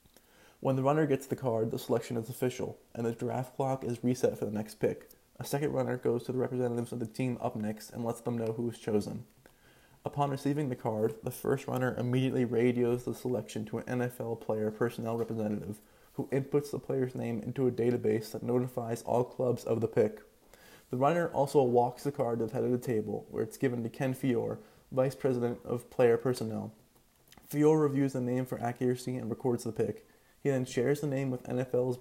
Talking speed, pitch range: 205 wpm, 115-130 Hz